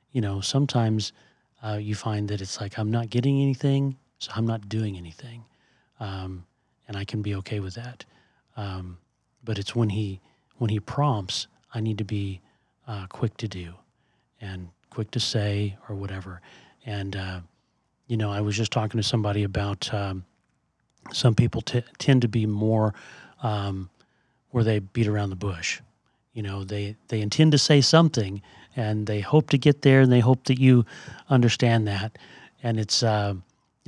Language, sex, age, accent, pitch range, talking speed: English, male, 40-59, American, 105-125 Hz, 175 wpm